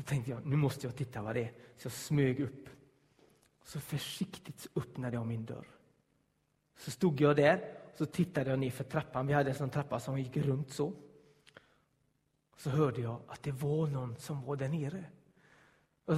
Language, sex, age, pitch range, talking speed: Swedish, male, 30-49, 140-205 Hz, 195 wpm